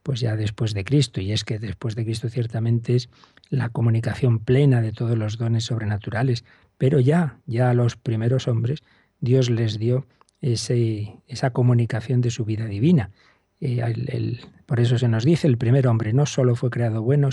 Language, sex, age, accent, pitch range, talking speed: Spanish, male, 40-59, Spanish, 115-140 Hz, 185 wpm